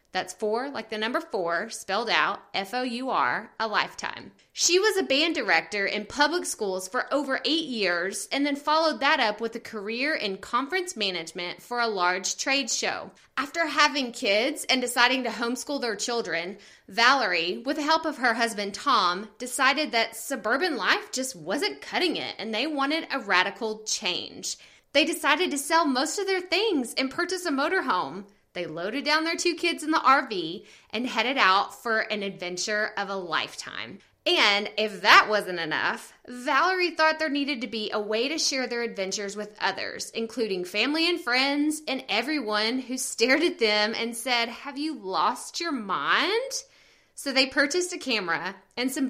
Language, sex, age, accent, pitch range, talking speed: English, female, 20-39, American, 210-300 Hz, 175 wpm